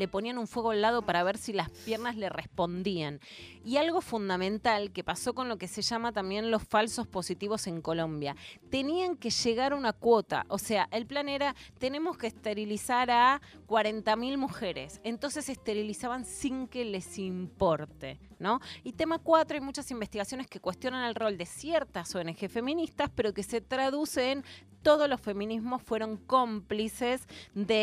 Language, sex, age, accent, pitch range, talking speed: Spanish, female, 20-39, Argentinian, 185-240 Hz, 170 wpm